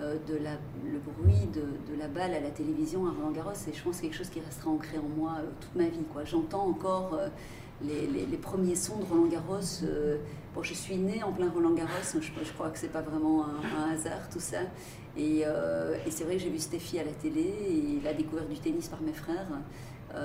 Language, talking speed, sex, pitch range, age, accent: French, 245 wpm, female, 150-185 Hz, 40-59, French